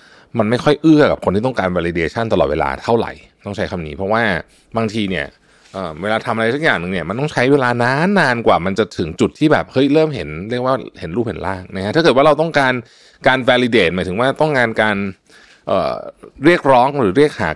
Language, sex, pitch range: Thai, male, 90-135 Hz